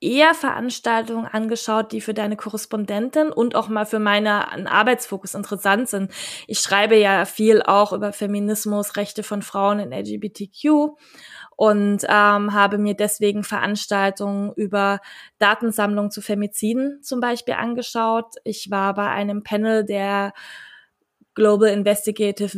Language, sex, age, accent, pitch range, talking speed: German, female, 20-39, German, 200-225 Hz, 130 wpm